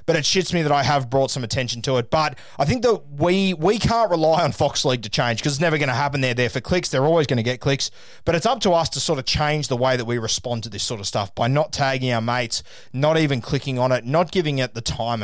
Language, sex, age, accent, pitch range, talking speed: English, male, 20-39, Australian, 130-175 Hz, 295 wpm